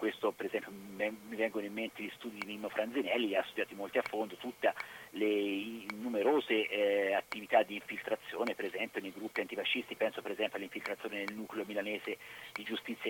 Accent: native